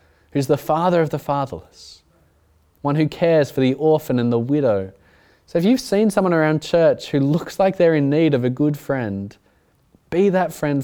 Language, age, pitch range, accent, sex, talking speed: English, 20-39, 105-155 Hz, Australian, male, 195 wpm